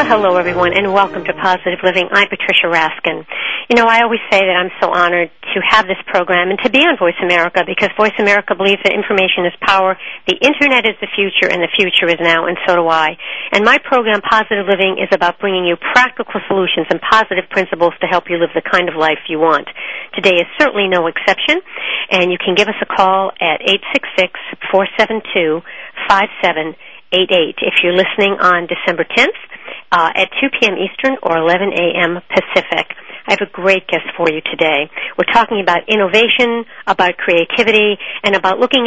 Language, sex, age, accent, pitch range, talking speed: English, female, 50-69, American, 180-225 Hz, 190 wpm